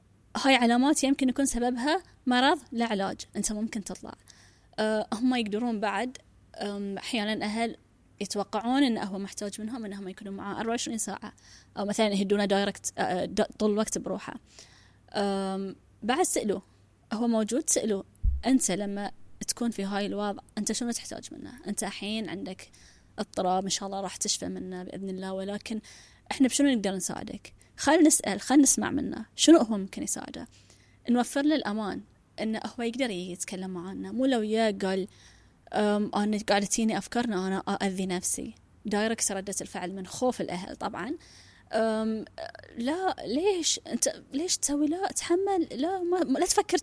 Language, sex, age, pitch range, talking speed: Arabic, female, 20-39, 195-260 Hz, 140 wpm